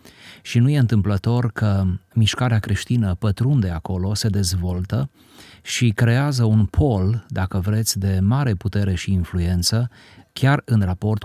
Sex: male